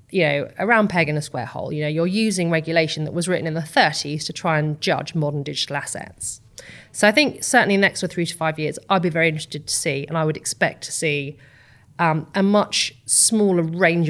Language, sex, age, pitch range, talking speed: English, female, 30-49, 150-180 Hz, 225 wpm